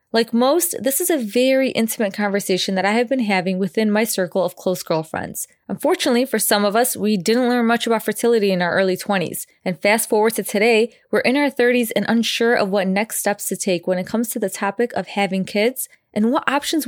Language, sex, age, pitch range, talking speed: English, female, 20-39, 195-245 Hz, 225 wpm